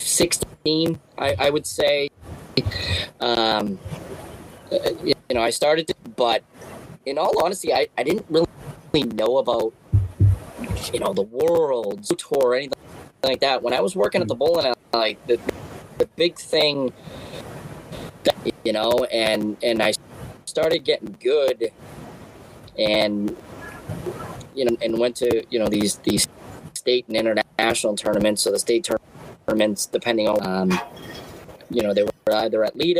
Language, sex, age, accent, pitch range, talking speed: English, male, 30-49, American, 105-150 Hz, 145 wpm